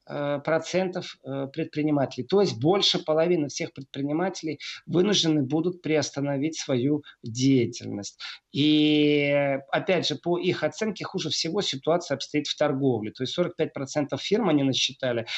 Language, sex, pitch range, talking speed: Russian, male, 145-175 Hz, 125 wpm